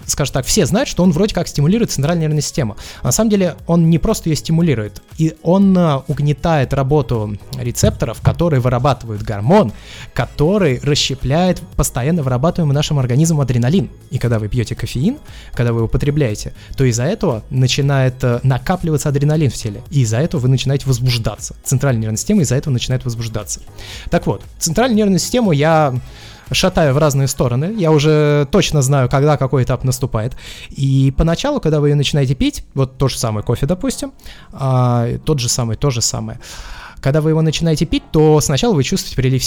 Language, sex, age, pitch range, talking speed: Russian, male, 20-39, 125-160 Hz, 170 wpm